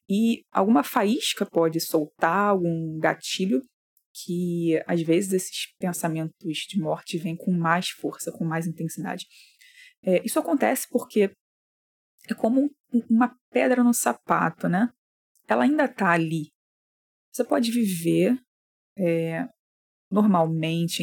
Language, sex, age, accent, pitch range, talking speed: Portuguese, female, 20-39, Brazilian, 170-235 Hz, 110 wpm